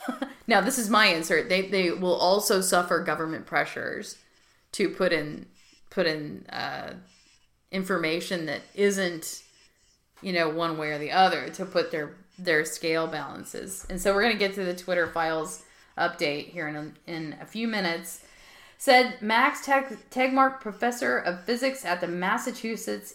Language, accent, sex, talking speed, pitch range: English, American, female, 160 wpm, 175-230 Hz